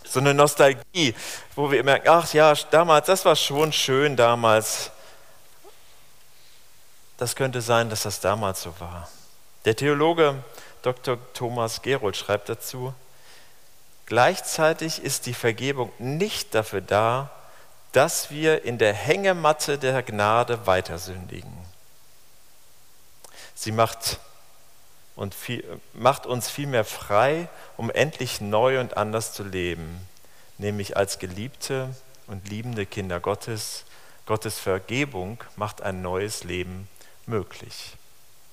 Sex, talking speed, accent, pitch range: male, 115 wpm, German, 105-135 Hz